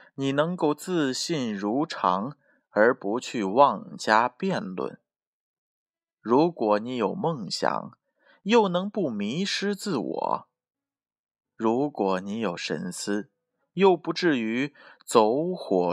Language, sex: Chinese, male